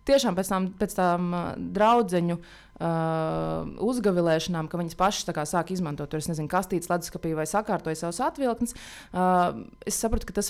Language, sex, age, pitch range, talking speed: English, female, 20-39, 165-210 Hz, 150 wpm